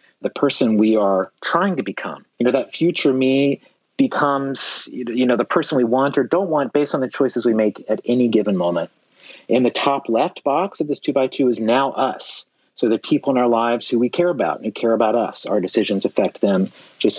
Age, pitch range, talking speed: 40-59, 110-140 Hz, 220 wpm